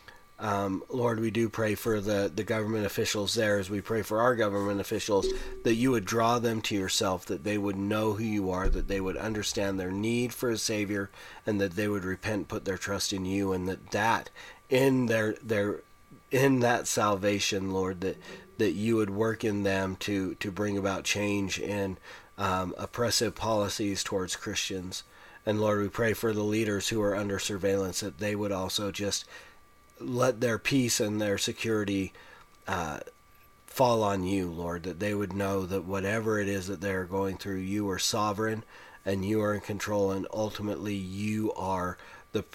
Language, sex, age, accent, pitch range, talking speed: English, male, 30-49, American, 95-110 Hz, 185 wpm